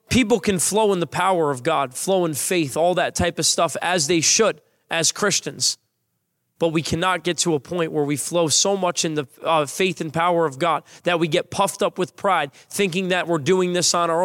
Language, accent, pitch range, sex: English, American, 165-195 Hz, male